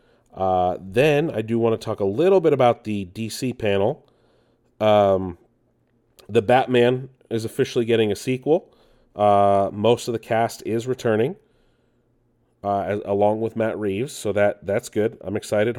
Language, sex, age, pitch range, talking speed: English, male, 30-49, 100-120 Hz, 150 wpm